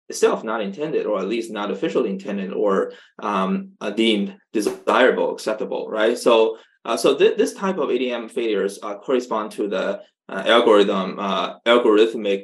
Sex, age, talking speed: male, 20-39, 160 wpm